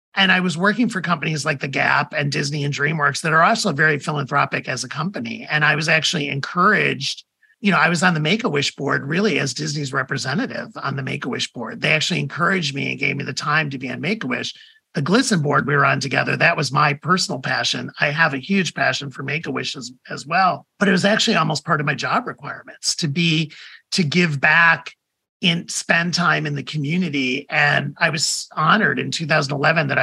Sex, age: male, 40-59